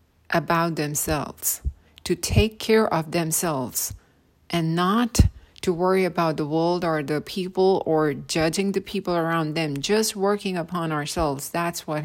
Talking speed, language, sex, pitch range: 145 wpm, English, female, 135-180 Hz